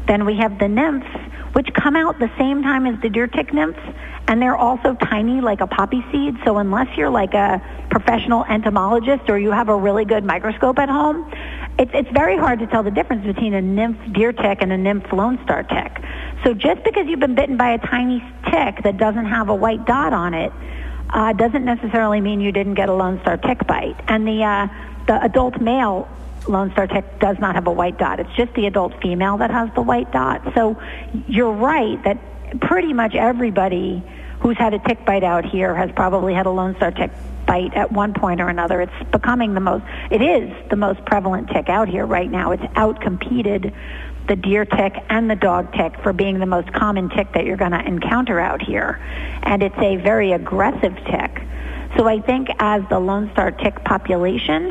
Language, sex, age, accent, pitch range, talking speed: English, female, 50-69, American, 190-240 Hz, 210 wpm